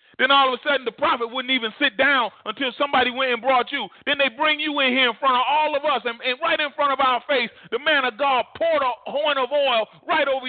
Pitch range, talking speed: 210-305 Hz, 275 wpm